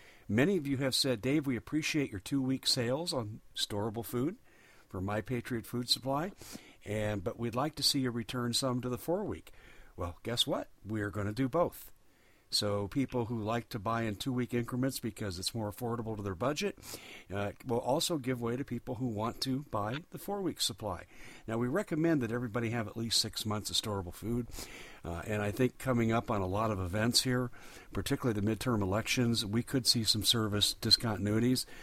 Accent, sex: American, male